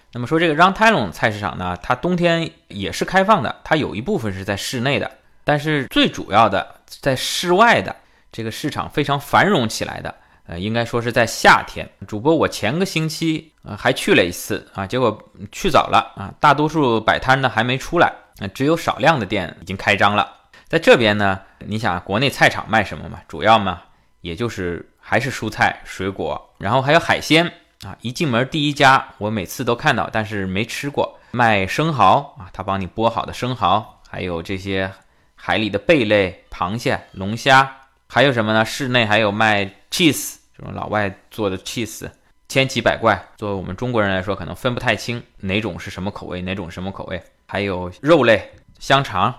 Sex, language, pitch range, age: male, Chinese, 100-135 Hz, 20-39